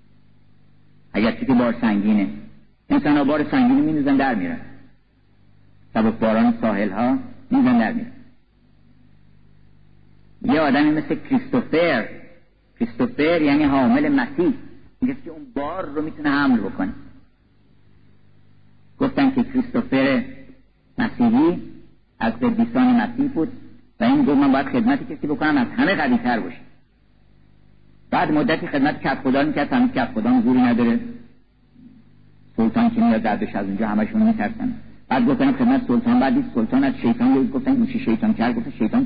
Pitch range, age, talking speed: 200-260 Hz, 50-69, 140 wpm